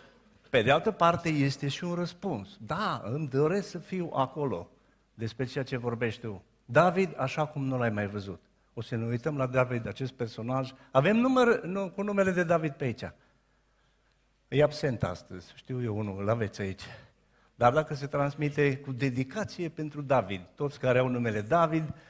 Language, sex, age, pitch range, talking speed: Romanian, male, 50-69, 115-145 Hz, 175 wpm